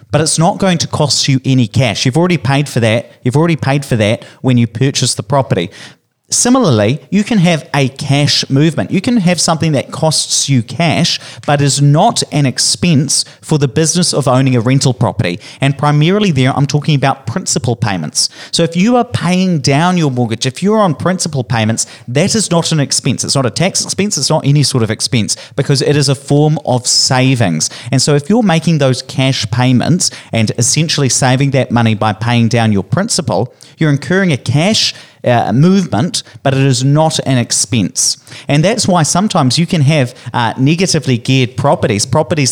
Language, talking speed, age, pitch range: English, 195 wpm, 30-49, 125-165 Hz